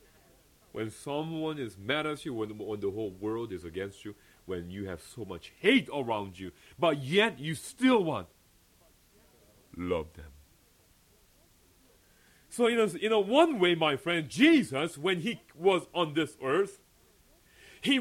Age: 40-59